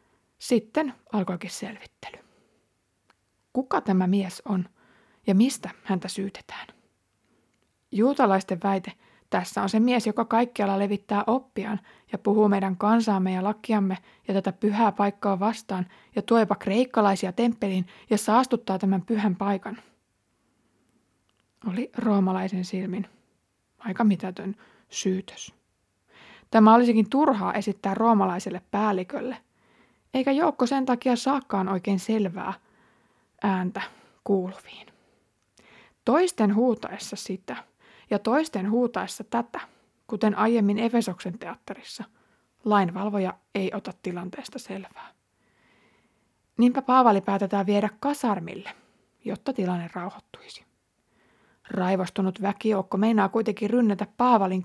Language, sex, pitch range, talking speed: Finnish, female, 195-235 Hz, 100 wpm